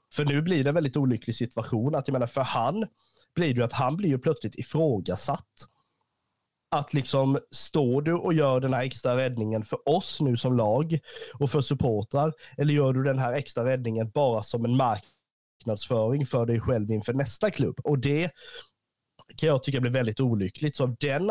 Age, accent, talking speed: 30-49, native, 190 wpm